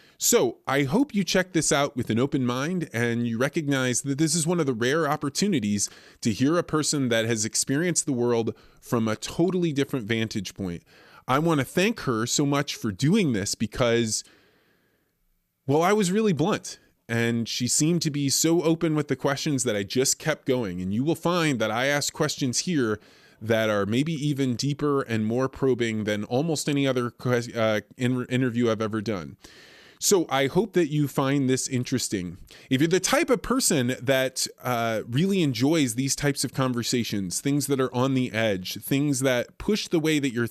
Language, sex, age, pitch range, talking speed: English, male, 20-39, 115-150 Hz, 190 wpm